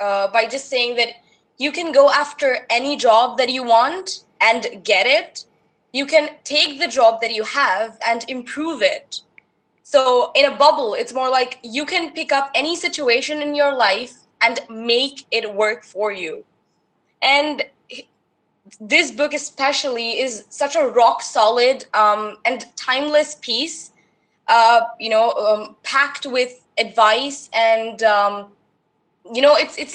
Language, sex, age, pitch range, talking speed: English, female, 20-39, 230-290 Hz, 150 wpm